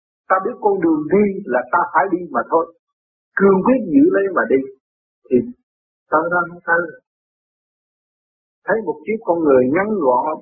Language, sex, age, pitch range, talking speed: Vietnamese, male, 60-79, 145-200 Hz, 160 wpm